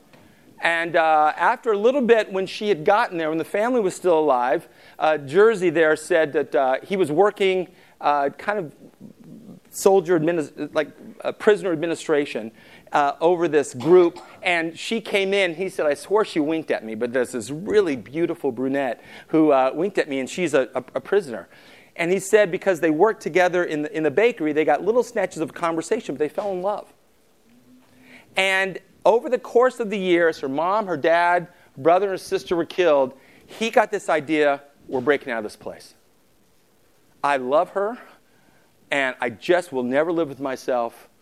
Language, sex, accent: English, male, American